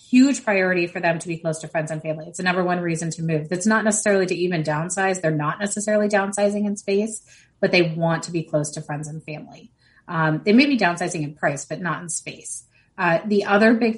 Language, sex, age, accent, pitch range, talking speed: English, female, 30-49, American, 165-195 Hz, 235 wpm